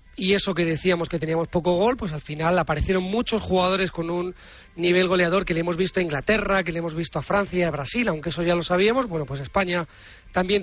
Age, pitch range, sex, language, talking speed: 40-59, 170-195 Hz, male, Spanish, 230 wpm